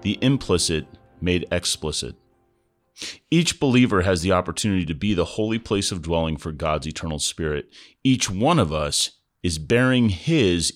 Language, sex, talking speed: English, male, 150 wpm